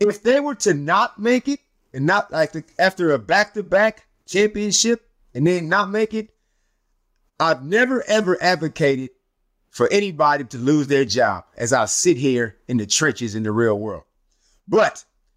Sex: male